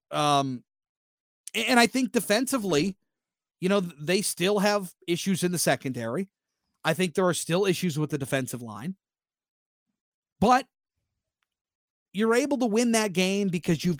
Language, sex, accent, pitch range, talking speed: English, male, American, 150-205 Hz, 140 wpm